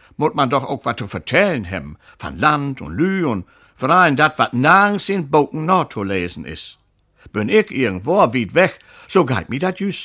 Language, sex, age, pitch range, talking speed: German, male, 60-79, 110-150 Hz, 205 wpm